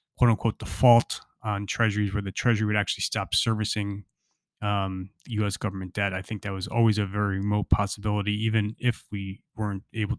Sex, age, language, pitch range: male, 20-39, English, 100-115 Hz